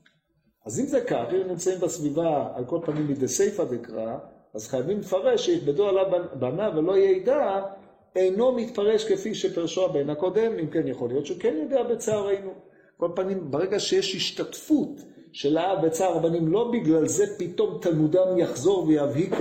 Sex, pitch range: male, 145-190 Hz